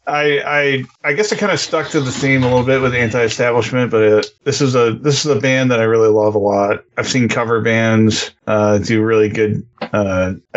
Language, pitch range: English, 105-125 Hz